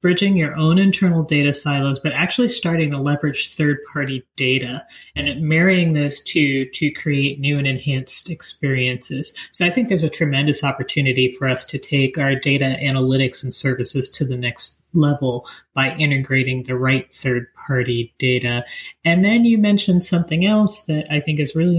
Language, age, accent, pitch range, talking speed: English, 30-49, American, 135-165 Hz, 165 wpm